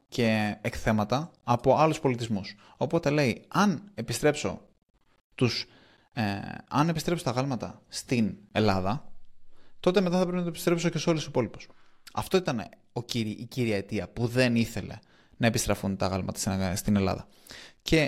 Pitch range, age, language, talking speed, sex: 105-145 Hz, 20-39, Greek, 155 wpm, male